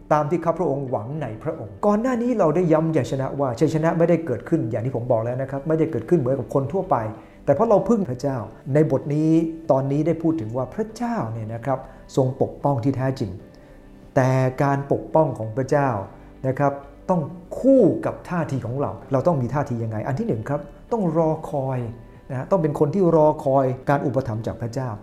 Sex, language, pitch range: male, English, 130-175 Hz